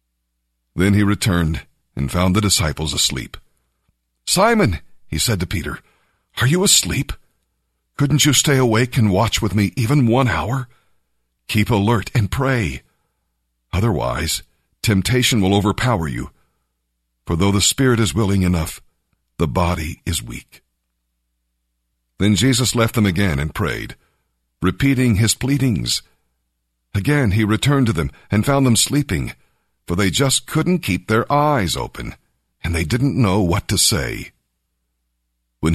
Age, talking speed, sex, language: 50-69, 140 wpm, male, English